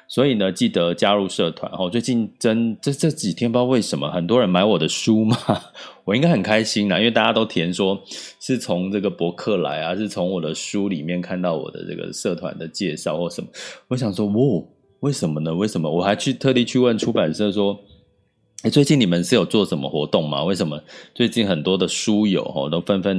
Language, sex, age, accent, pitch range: Chinese, male, 20-39, native, 90-120 Hz